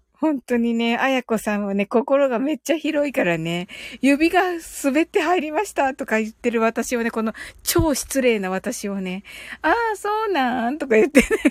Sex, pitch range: female, 235-315 Hz